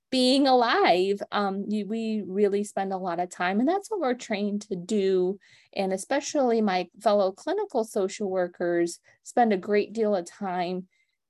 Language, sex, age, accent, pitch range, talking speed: English, female, 20-39, American, 180-220 Hz, 160 wpm